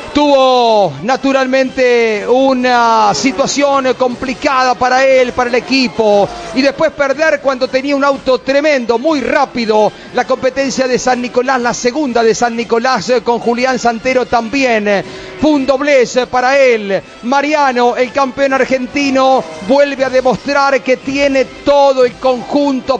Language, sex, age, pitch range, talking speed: Spanish, male, 40-59, 250-275 Hz, 135 wpm